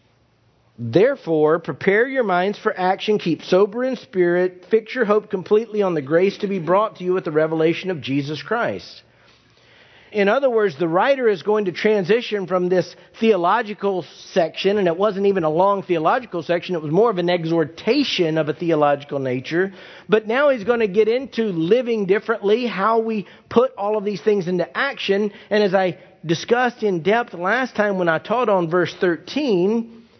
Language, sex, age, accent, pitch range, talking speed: English, male, 50-69, American, 170-215 Hz, 180 wpm